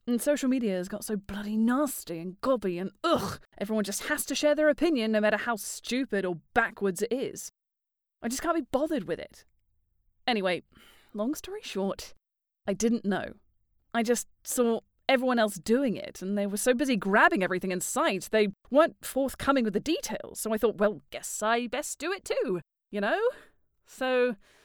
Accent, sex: British, female